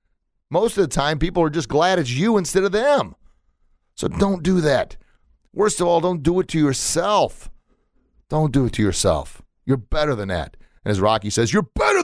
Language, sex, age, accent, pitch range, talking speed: English, male, 40-59, American, 95-130 Hz, 200 wpm